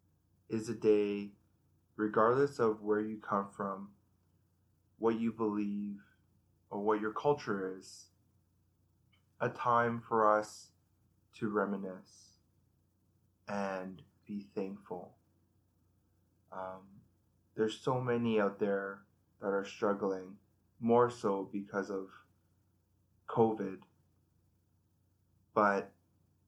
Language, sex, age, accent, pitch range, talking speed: English, male, 20-39, American, 90-105 Hz, 95 wpm